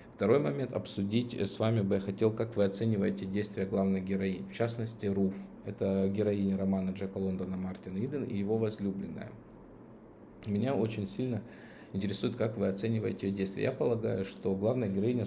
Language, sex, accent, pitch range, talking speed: Russian, male, native, 95-110 Hz, 160 wpm